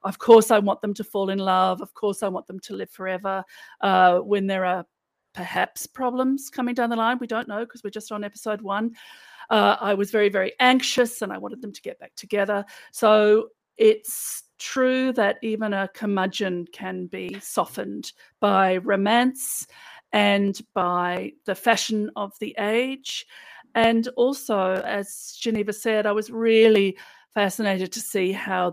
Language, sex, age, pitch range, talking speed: English, female, 40-59, 190-225 Hz, 170 wpm